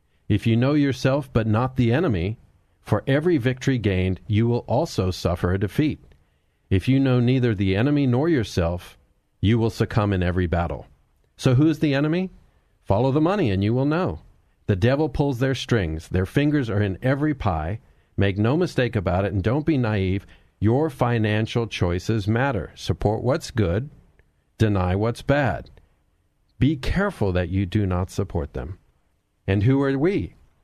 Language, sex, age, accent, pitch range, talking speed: English, male, 50-69, American, 95-125 Hz, 170 wpm